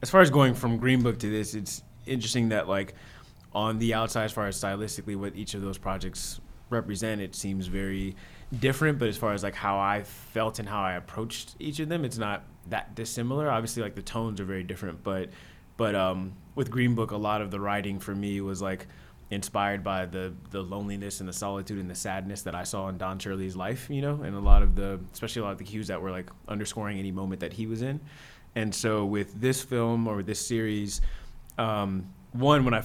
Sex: male